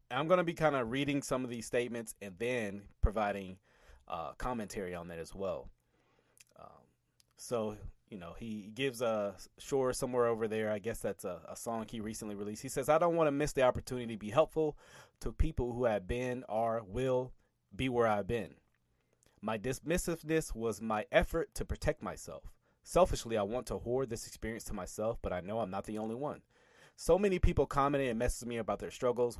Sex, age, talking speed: male, 30-49, 200 wpm